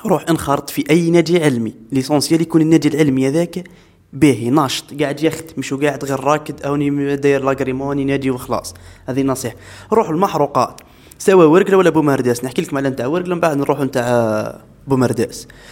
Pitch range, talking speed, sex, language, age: 135-170 Hz, 155 wpm, male, Arabic, 20-39